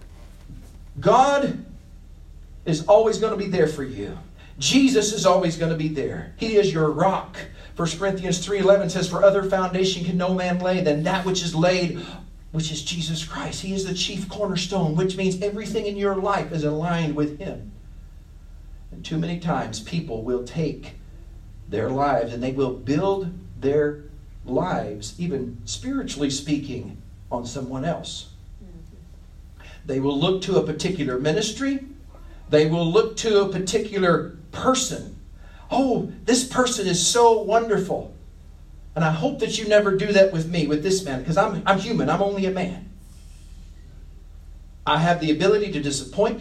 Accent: American